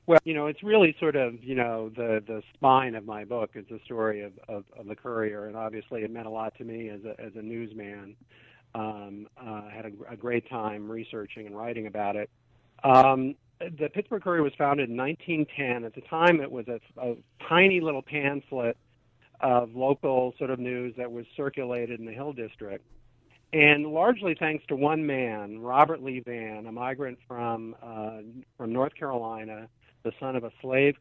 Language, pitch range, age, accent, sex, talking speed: English, 115-140 Hz, 50-69, American, male, 195 wpm